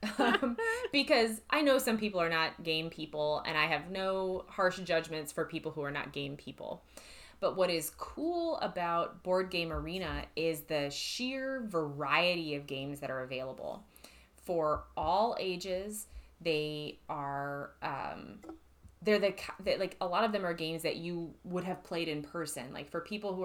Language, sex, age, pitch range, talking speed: English, female, 20-39, 155-195 Hz, 170 wpm